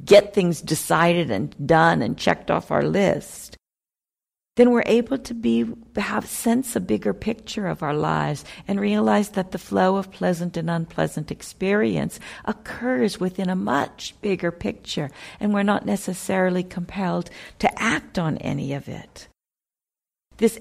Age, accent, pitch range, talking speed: 50-69, American, 160-205 Hz, 150 wpm